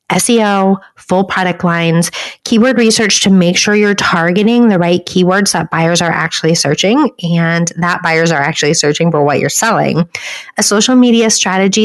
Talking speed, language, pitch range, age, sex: 165 wpm, English, 170-215 Hz, 30-49, female